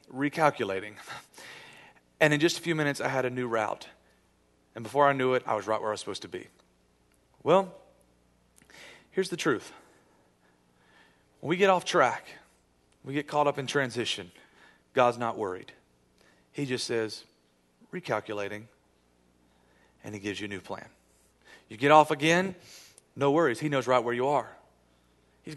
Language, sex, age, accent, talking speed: English, male, 40-59, American, 160 wpm